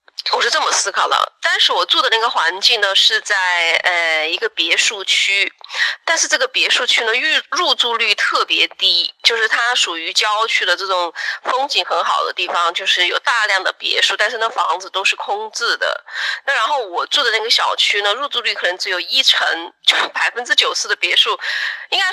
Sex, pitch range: female, 200-335 Hz